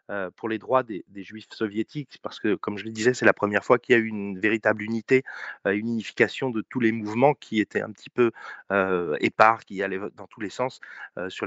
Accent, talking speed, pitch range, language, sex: French, 235 wpm, 105-125 Hz, French, male